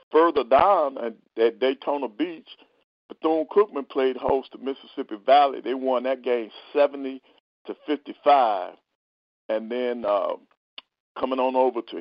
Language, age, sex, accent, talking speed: English, 50-69, male, American, 120 wpm